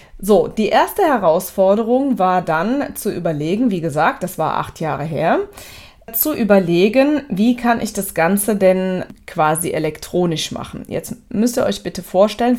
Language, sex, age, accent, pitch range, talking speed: German, female, 20-39, German, 170-215 Hz, 155 wpm